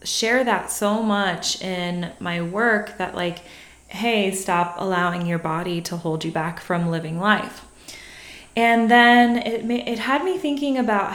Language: English